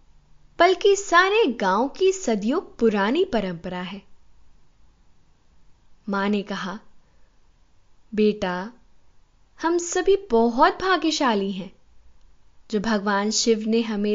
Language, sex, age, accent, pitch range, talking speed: Hindi, female, 10-29, native, 195-275 Hz, 95 wpm